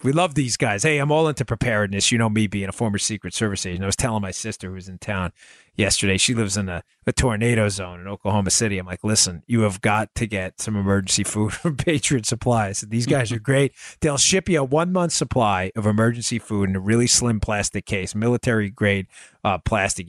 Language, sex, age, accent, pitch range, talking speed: English, male, 30-49, American, 100-120 Hz, 225 wpm